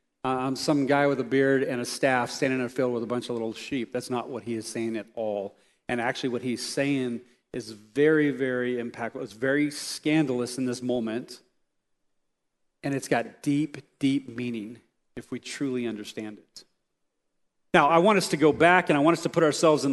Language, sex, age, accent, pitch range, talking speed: English, male, 40-59, American, 135-180 Hz, 205 wpm